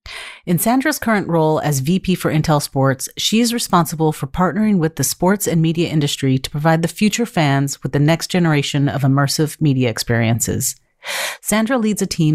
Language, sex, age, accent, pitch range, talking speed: English, female, 40-59, American, 145-180 Hz, 180 wpm